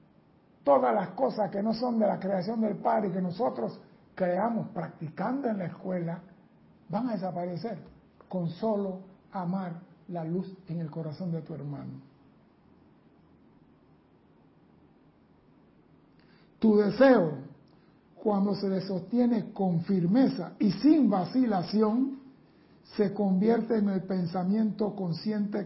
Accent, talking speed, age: American, 115 wpm, 60-79